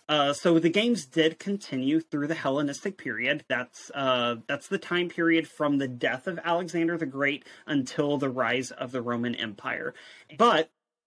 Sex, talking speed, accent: male, 170 wpm, American